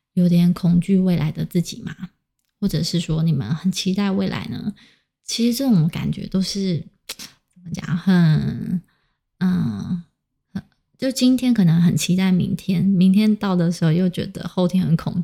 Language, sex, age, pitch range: Chinese, female, 20-39, 170-195 Hz